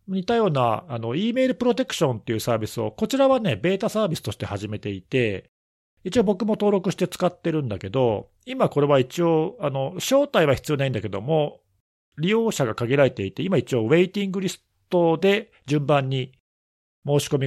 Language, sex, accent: Japanese, male, native